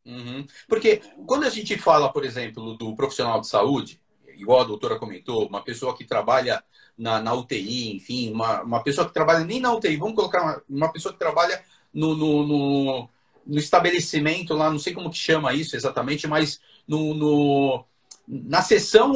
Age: 40-59